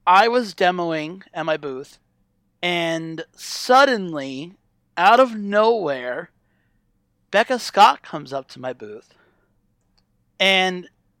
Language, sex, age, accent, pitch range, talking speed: English, male, 30-49, American, 160-205 Hz, 100 wpm